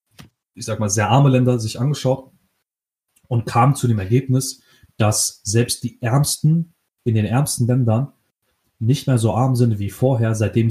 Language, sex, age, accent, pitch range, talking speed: German, male, 30-49, German, 110-130 Hz, 165 wpm